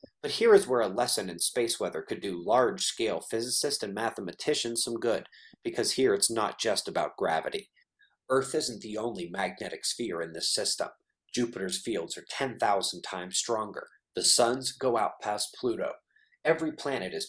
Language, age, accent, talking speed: English, 30-49, American, 175 wpm